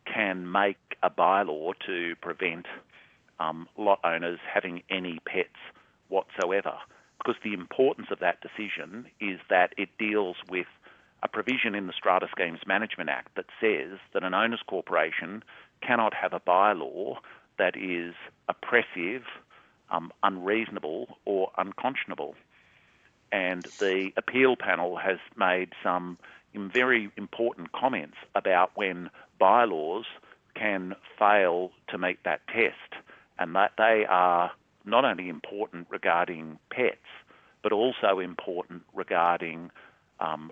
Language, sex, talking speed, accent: English, male, 120 wpm, Australian